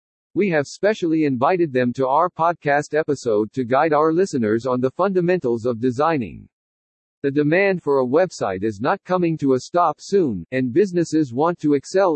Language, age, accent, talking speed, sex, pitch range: English, 50-69, American, 175 wpm, male, 125-170 Hz